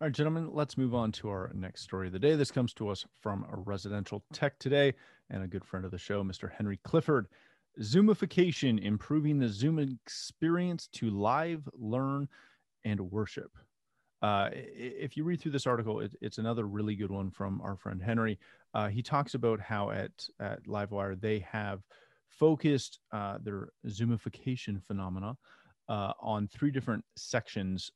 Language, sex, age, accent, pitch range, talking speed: English, male, 30-49, American, 100-135 Hz, 170 wpm